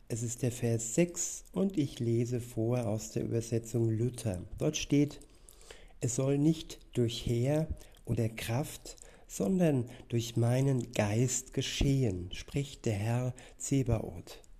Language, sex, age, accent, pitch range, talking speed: German, male, 60-79, German, 115-135 Hz, 125 wpm